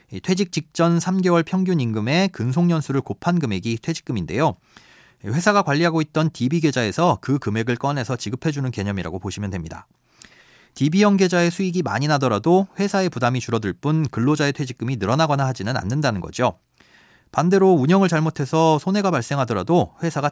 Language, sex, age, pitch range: Korean, male, 40-59, 115-170 Hz